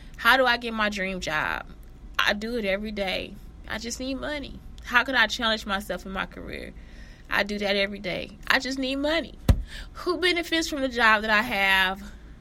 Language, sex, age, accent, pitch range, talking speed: English, female, 20-39, American, 190-235 Hz, 200 wpm